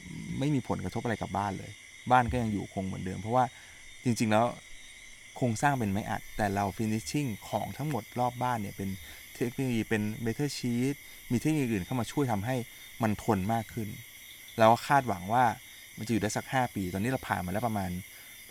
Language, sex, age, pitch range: Thai, male, 20-39, 100-125 Hz